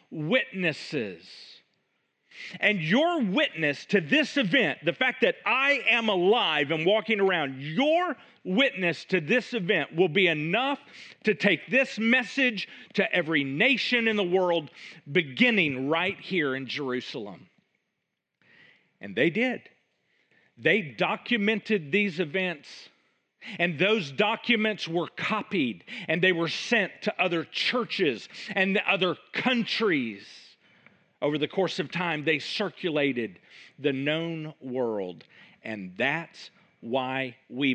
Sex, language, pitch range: male, English, 150-220 Hz